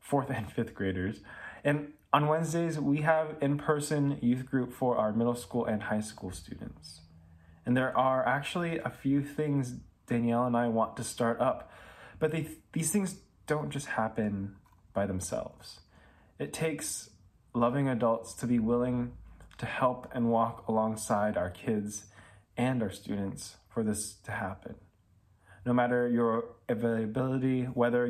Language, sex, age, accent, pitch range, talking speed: English, male, 20-39, American, 105-125 Hz, 145 wpm